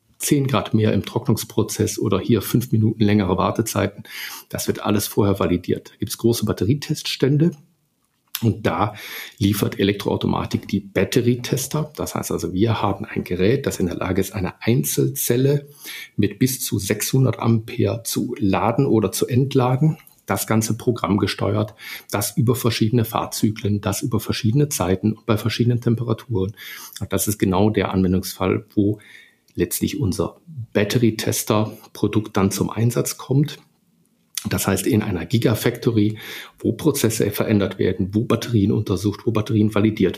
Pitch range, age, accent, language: 100-115 Hz, 50-69, German, German